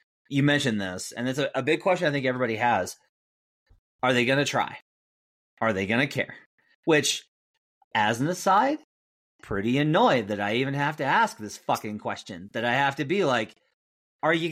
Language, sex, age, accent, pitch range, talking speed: English, male, 30-49, American, 105-165 Hz, 190 wpm